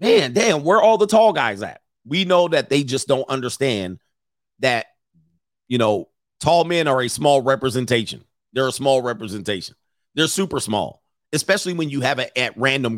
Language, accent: English, American